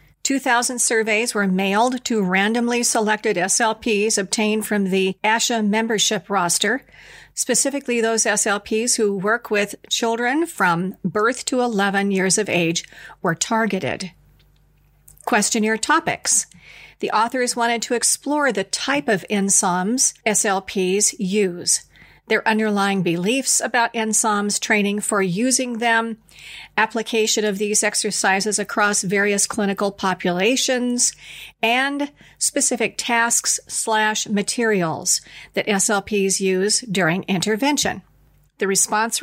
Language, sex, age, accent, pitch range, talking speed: English, female, 40-59, American, 195-235 Hz, 110 wpm